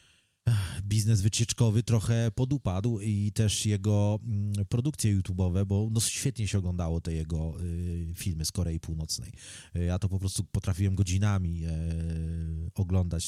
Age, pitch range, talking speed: 30-49, 85-110 Hz, 115 wpm